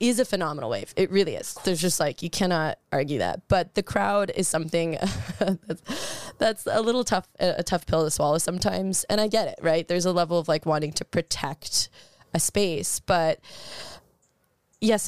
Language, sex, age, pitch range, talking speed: English, female, 20-39, 165-205 Hz, 185 wpm